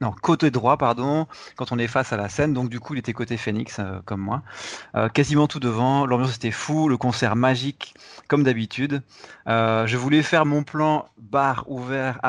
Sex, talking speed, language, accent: male, 200 wpm, French, French